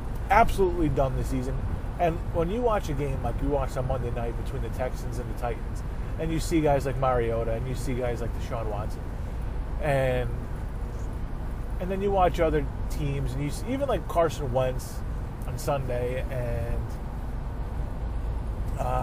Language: English